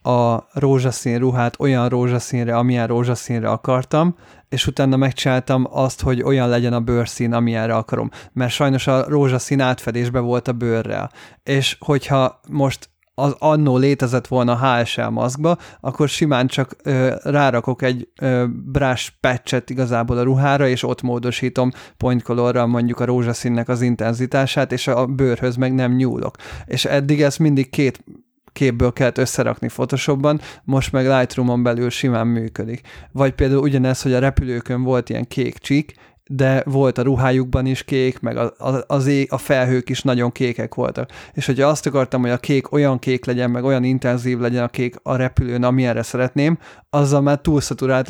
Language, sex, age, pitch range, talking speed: Hungarian, male, 30-49, 120-135 Hz, 155 wpm